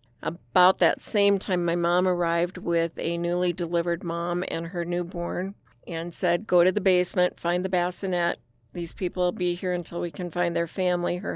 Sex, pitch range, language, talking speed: female, 170-185 Hz, English, 190 wpm